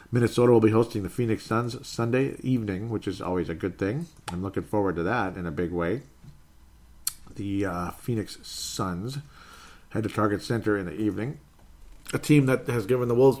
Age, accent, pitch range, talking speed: 40-59, American, 100-115 Hz, 190 wpm